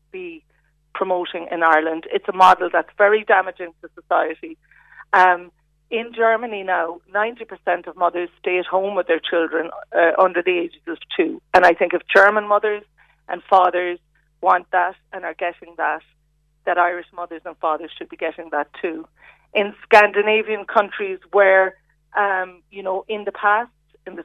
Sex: female